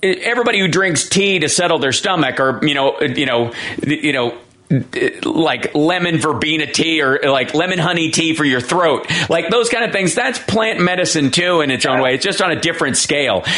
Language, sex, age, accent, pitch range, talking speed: English, male, 40-59, American, 135-180 Hz, 205 wpm